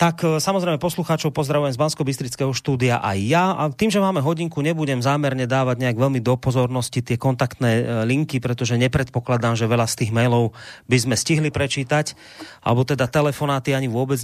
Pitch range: 120-145 Hz